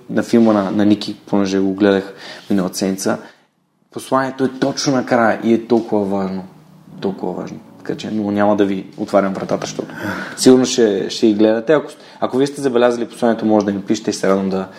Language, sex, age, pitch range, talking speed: Bulgarian, male, 20-39, 105-135 Hz, 185 wpm